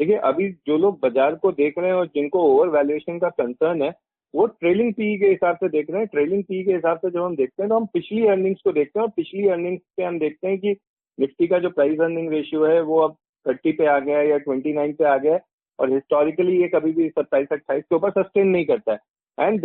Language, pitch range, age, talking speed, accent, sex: Hindi, 145-205 Hz, 40-59, 245 wpm, native, male